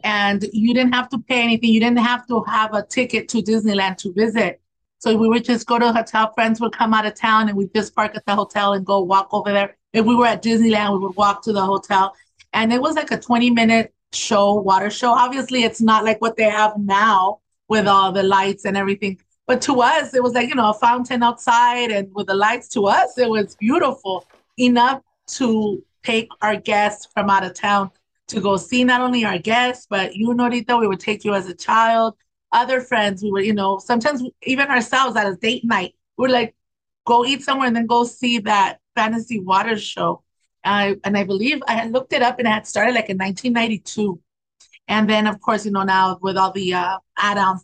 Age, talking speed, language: 30-49, 225 wpm, English